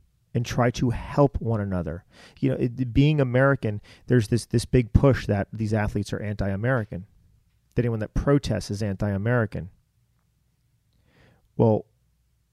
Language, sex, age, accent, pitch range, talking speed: English, male, 30-49, American, 105-125 Hz, 135 wpm